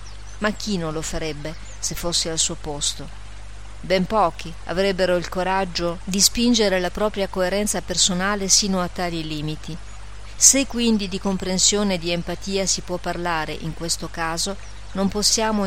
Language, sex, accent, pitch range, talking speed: Italian, female, native, 160-195 Hz, 155 wpm